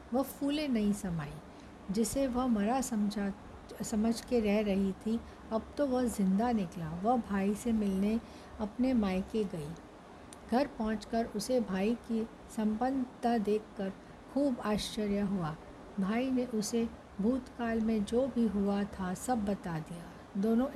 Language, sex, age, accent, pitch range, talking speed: Hindi, female, 60-79, native, 200-235 Hz, 140 wpm